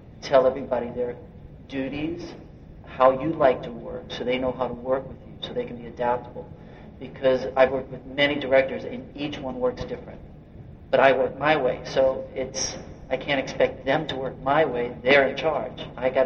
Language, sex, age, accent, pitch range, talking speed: English, male, 50-69, American, 130-145 Hz, 195 wpm